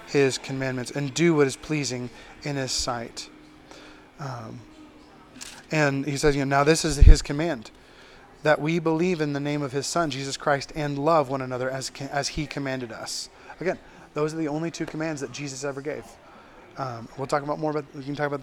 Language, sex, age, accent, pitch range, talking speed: English, male, 30-49, American, 135-160 Hz, 200 wpm